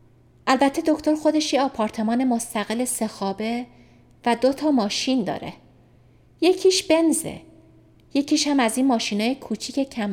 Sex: female